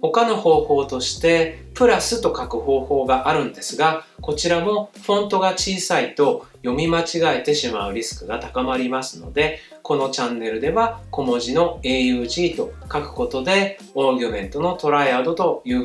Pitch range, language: 125-205 Hz, Japanese